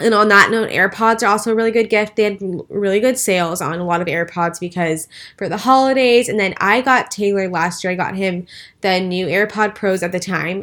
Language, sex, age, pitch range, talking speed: English, female, 10-29, 180-215 Hz, 235 wpm